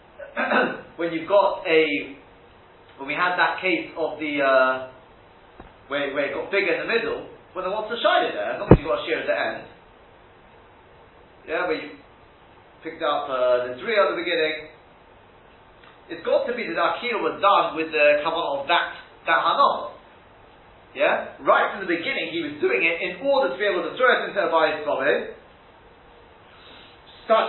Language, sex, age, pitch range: English, male, 30-49, 150-235 Hz